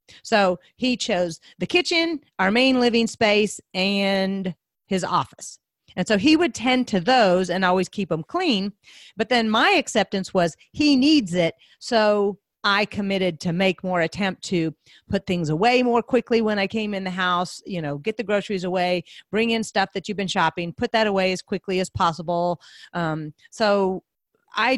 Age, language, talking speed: 40-59, English, 180 wpm